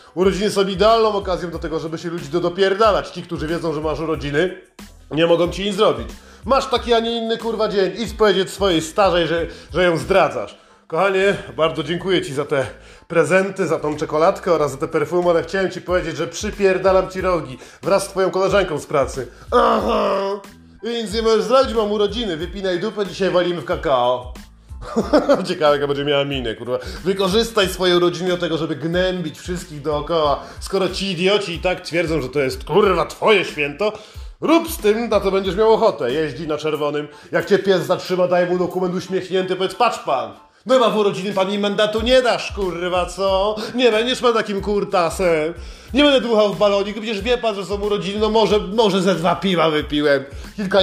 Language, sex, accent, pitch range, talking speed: Polish, male, native, 165-205 Hz, 190 wpm